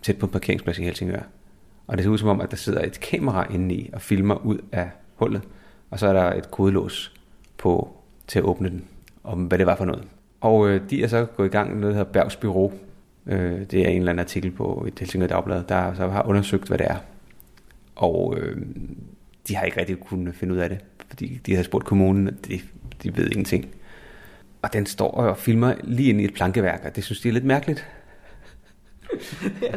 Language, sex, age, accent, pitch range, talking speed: Danish, male, 30-49, native, 95-115 Hz, 225 wpm